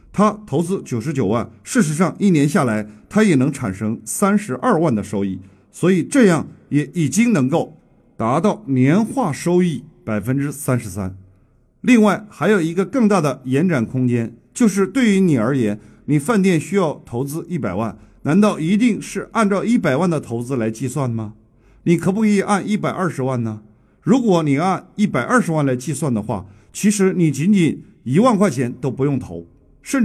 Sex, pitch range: male, 125-210 Hz